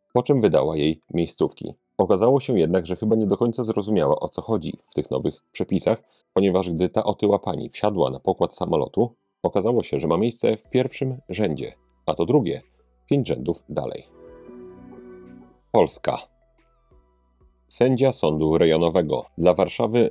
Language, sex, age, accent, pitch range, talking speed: Polish, male, 40-59, native, 85-110 Hz, 150 wpm